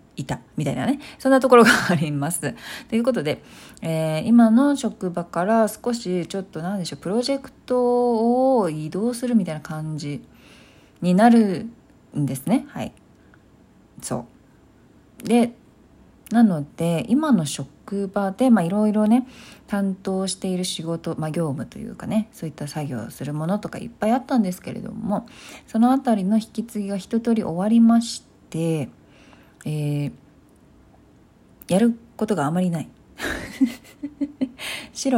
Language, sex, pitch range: Japanese, female, 170-235 Hz